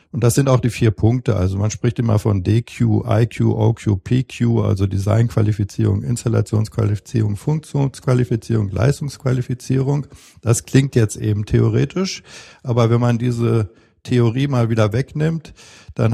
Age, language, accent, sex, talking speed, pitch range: 50-69, German, German, male, 130 wpm, 105-125 Hz